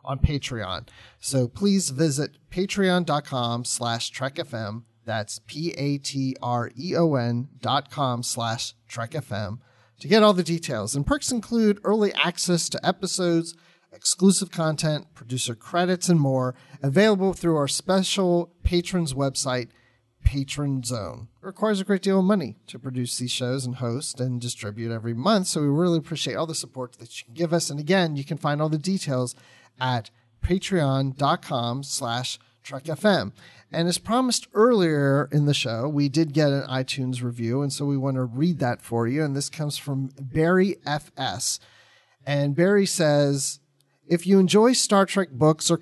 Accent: American